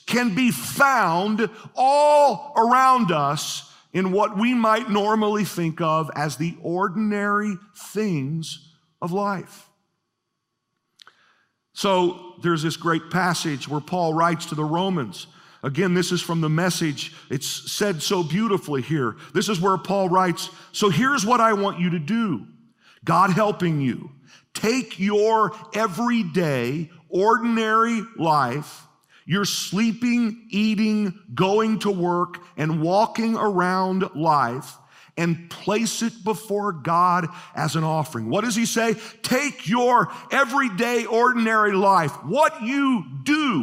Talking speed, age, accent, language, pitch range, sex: 125 wpm, 50-69, American, English, 165-225 Hz, male